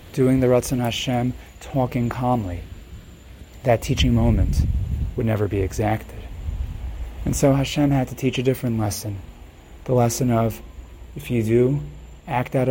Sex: male